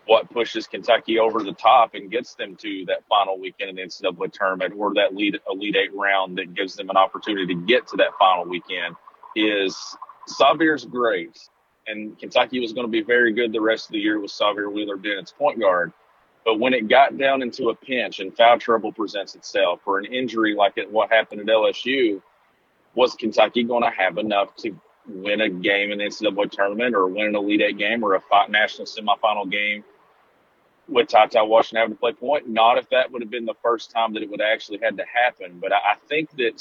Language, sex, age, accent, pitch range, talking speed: English, male, 40-59, American, 105-165 Hz, 210 wpm